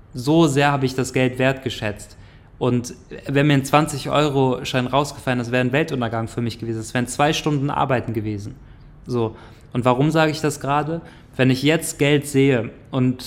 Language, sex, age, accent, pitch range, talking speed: German, male, 20-39, German, 120-135 Hz, 180 wpm